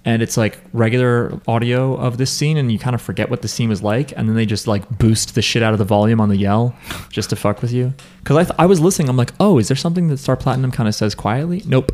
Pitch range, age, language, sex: 105-140 Hz, 30-49, English, male